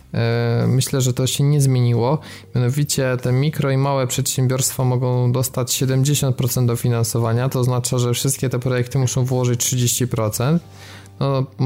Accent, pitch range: native, 120-135 Hz